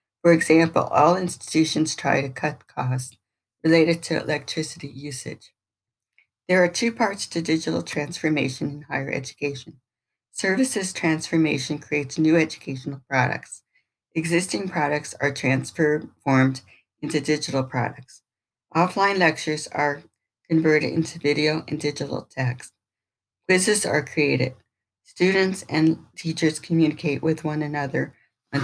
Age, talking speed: 60-79, 115 wpm